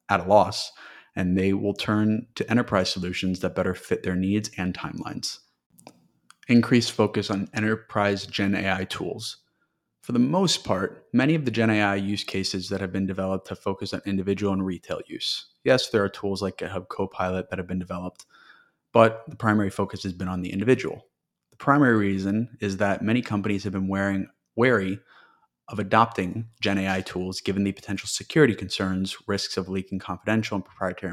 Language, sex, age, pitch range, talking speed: English, male, 30-49, 95-110 Hz, 175 wpm